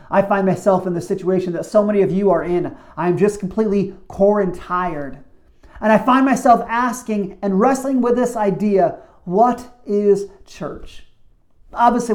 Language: English